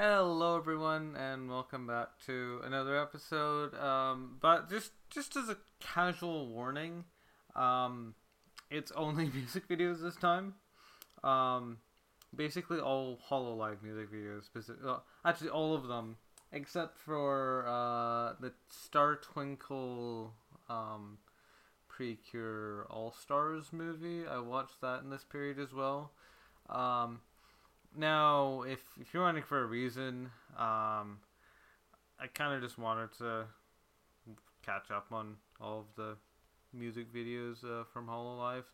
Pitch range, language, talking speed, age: 115-150 Hz, English, 125 wpm, 20-39